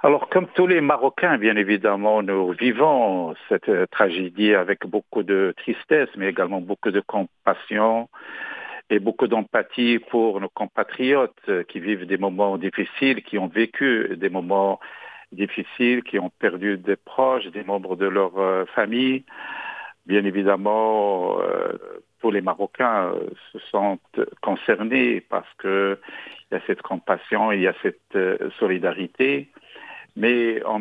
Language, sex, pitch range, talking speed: English, male, 100-120 Hz, 130 wpm